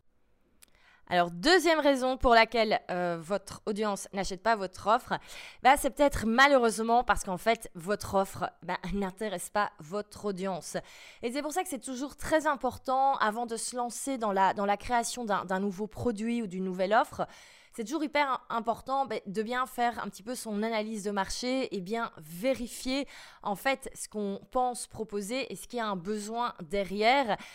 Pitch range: 200-250 Hz